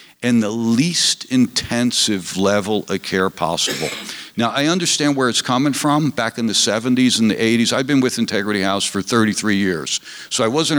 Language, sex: English, male